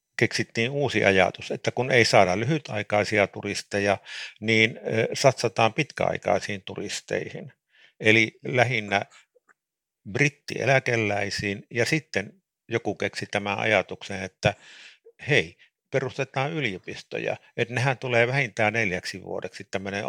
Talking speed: 100 wpm